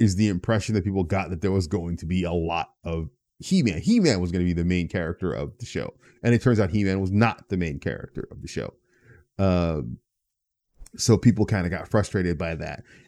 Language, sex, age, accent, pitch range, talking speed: English, male, 20-39, American, 90-110 Hz, 225 wpm